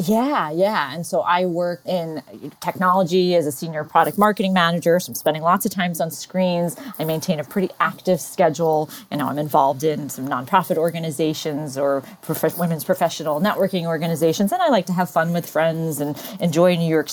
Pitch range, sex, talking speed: 150-175 Hz, female, 185 wpm